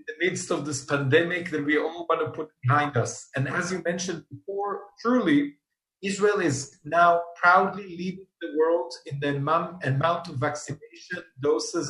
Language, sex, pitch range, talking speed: English, male, 150-185 Hz, 165 wpm